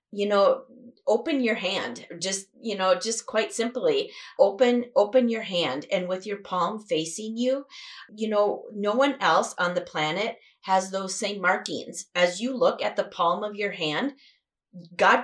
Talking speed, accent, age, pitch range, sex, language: 170 wpm, American, 30-49, 160-230 Hz, female, English